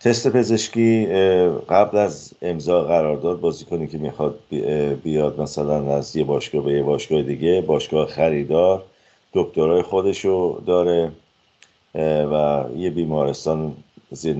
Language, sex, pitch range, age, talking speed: Persian, male, 70-90 Hz, 50-69, 115 wpm